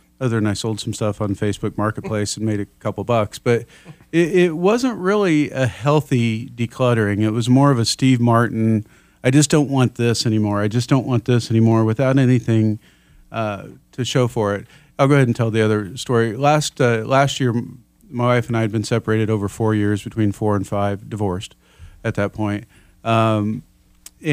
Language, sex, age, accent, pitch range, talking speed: English, male, 40-59, American, 105-125 Hz, 195 wpm